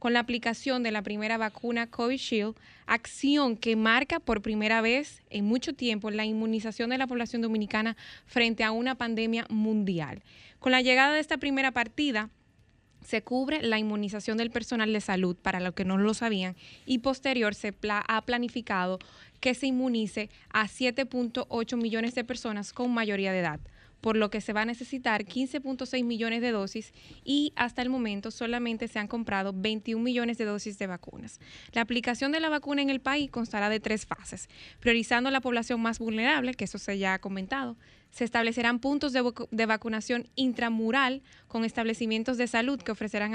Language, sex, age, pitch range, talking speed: Spanish, female, 20-39, 215-250 Hz, 175 wpm